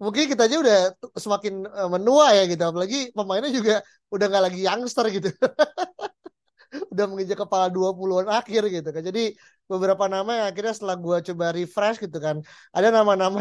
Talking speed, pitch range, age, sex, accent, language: 160 wpm, 165-205 Hz, 20-39, male, native, Indonesian